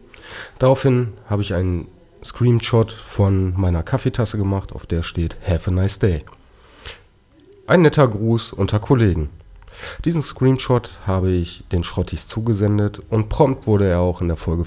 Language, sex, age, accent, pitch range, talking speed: German, male, 40-59, German, 90-110 Hz, 145 wpm